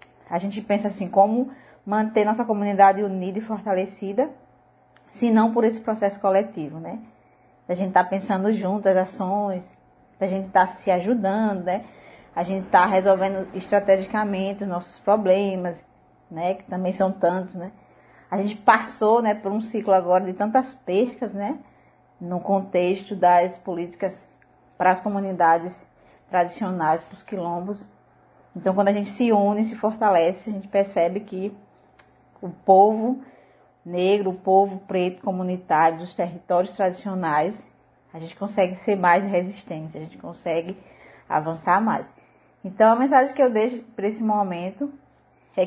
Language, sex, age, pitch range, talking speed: Portuguese, female, 20-39, 180-205 Hz, 145 wpm